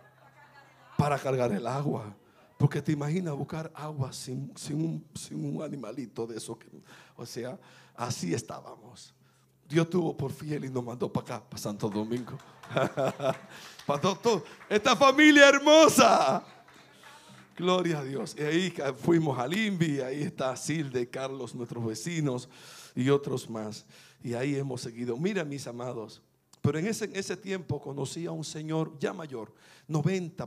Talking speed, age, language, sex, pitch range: 155 wpm, 50-69, Spanish, male, 135-190 Hz